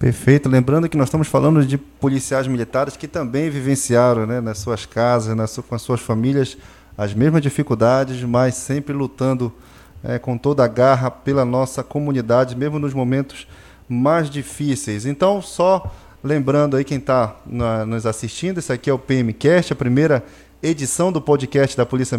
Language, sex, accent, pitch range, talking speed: Portuguese, male, Brazilian, 120-145 Hz, 165 wpm